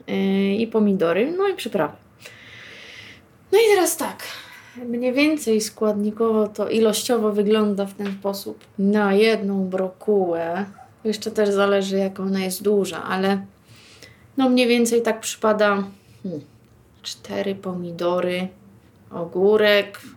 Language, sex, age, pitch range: Polish, female, 20-39, 190-225 Hz